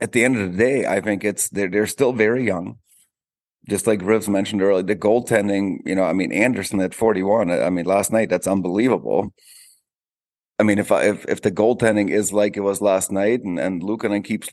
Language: English